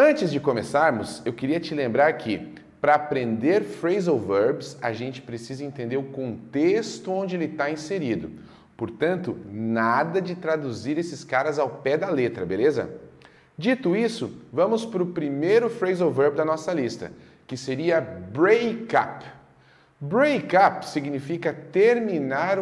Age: 40-59